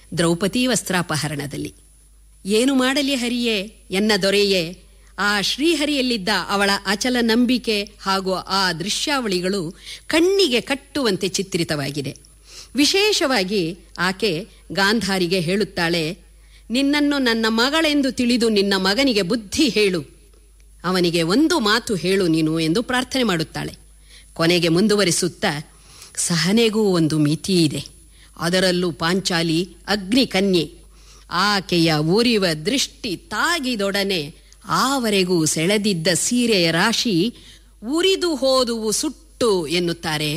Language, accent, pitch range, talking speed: Kannada, native, 170-245 Hz, 85 wpm